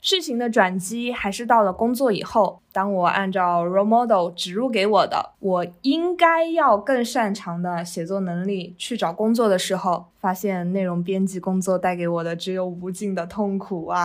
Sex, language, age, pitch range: female, Chinese, 20-39, 185-235 Hz